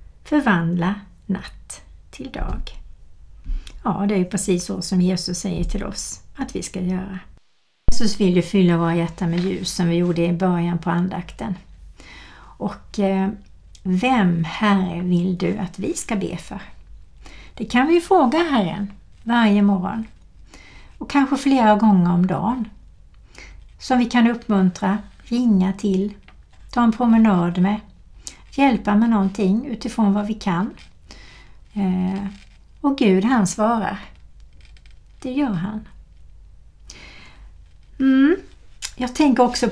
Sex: female